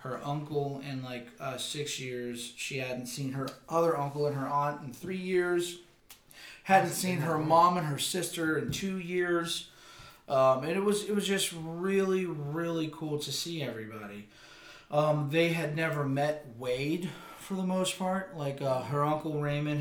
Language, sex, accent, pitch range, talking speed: English, male, American, 125-155 Hz, 175 wpm